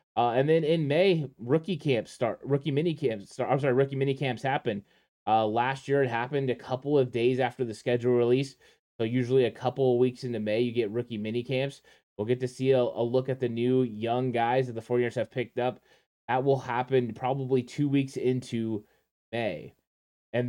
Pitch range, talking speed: 115-130 Hz, 210 wpm